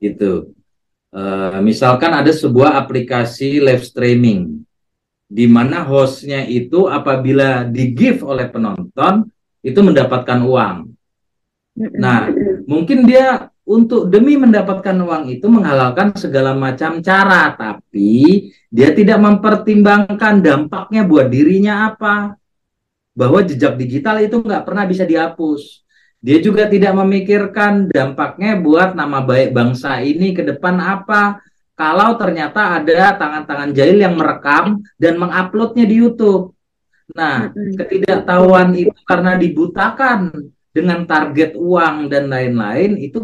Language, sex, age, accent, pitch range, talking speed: Indonesian, male, 40-59, native, 135-205 Hz, 115 wpm